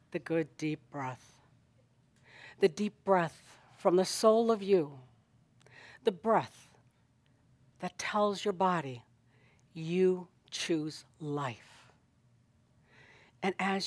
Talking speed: 100 wpm